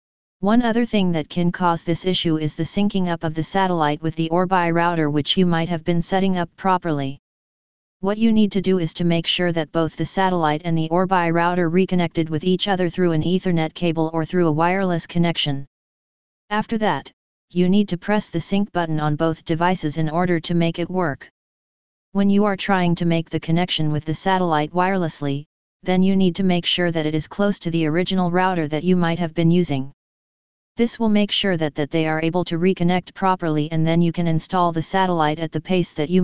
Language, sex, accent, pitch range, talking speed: English, female, American, 160-185 Hz, 215 wpm